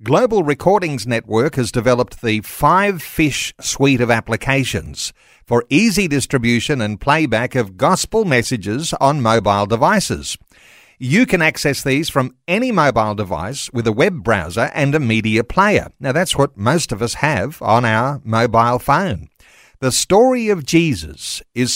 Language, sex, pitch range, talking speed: English, male, 120-170 Hz, 150 wpm